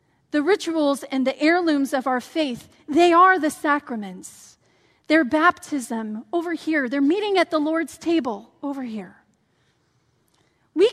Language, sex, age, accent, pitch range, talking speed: English, female, 40-59, American, 240-335 Hz, 135 wpm